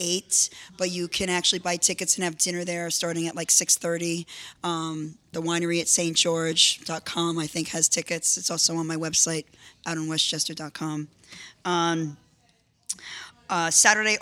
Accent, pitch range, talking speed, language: American, 165-195 Hz, 135 wpm, English